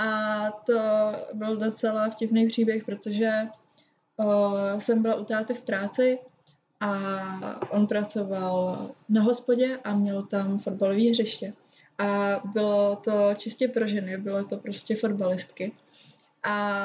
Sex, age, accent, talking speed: female, 20-39, native, 120 wpm